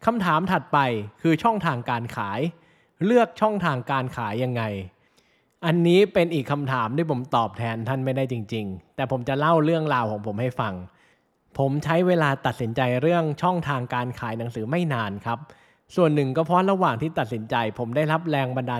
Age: 20-39